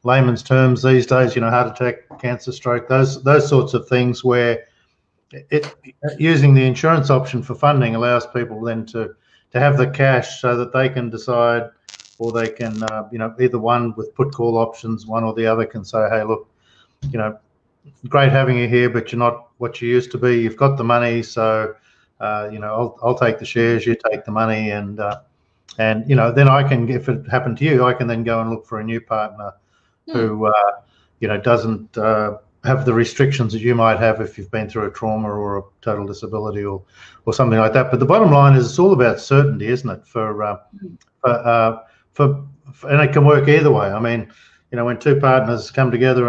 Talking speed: 220 wpm